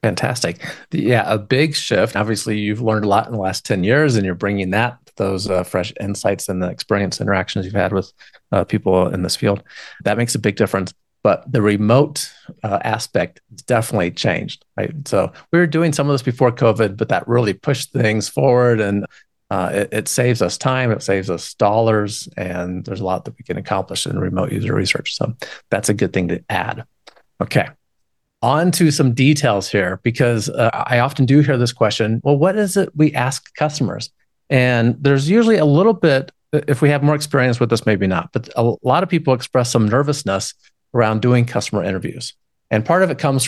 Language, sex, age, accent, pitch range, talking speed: English, male, 40-59, American, 105-135 Hz, 205 wpm